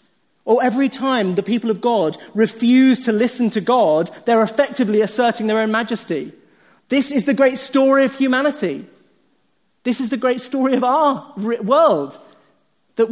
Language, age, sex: English, 30-49, male